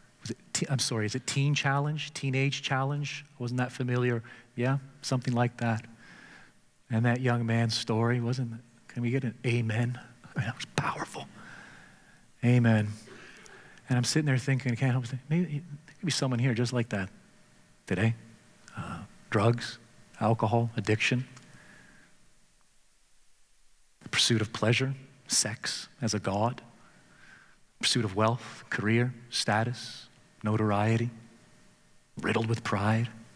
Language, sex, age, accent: English, male, 40-59, American